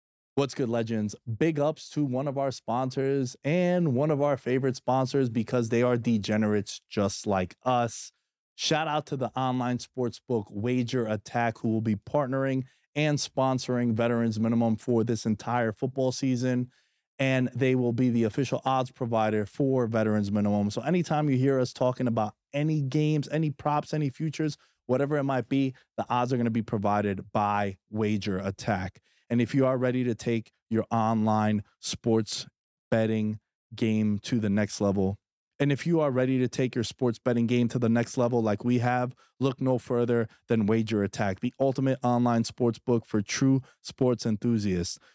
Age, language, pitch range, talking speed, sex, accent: 20-39, English, 115-130 Hz, 175 wpm, male, American